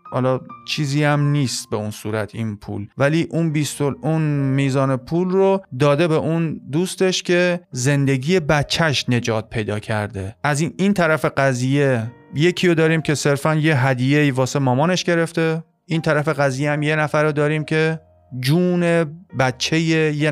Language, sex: Persian, male